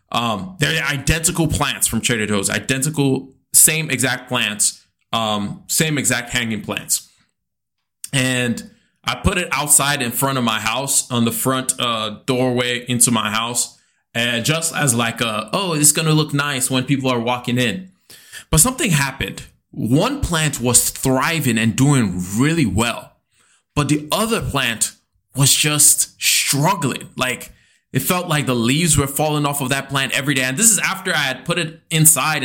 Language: English